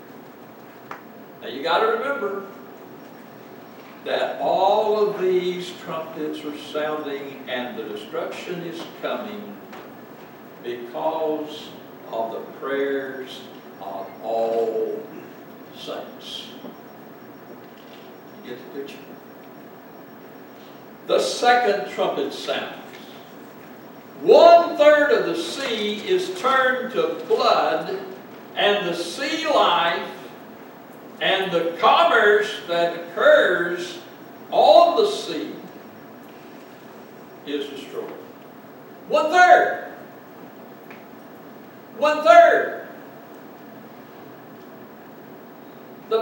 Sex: male